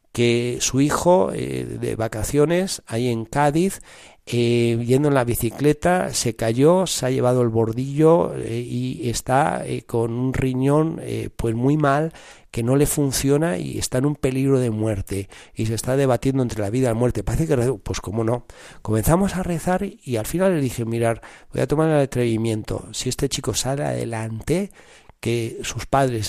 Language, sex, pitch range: Spanish, male, 105-135 Hz